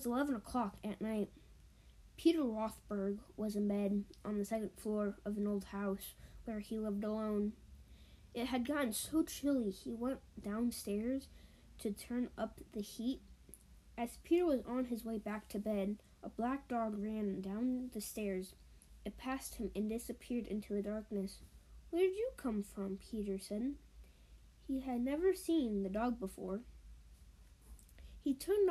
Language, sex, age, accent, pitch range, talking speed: English, female, 10-29, American, 205-245 Hz, 155 wpm